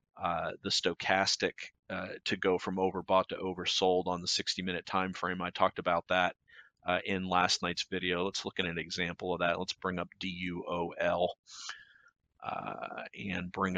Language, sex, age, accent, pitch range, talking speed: English, male, 40-59, American, 90-100 Hz, 160 wpm